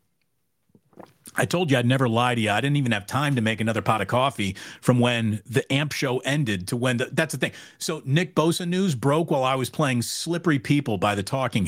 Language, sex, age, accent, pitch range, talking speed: English, male, 40-59, American, 130-190 Hz, 225 wpm